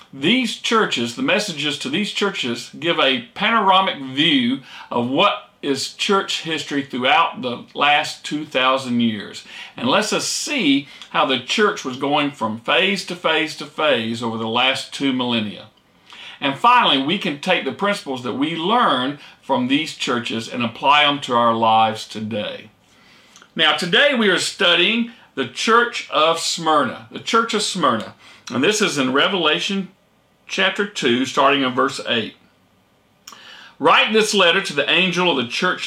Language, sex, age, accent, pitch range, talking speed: English, male, 50-69, American, 125-195 Hz, 155 wpm